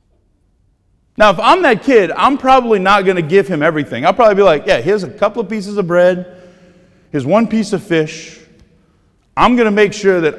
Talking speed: 210 wpm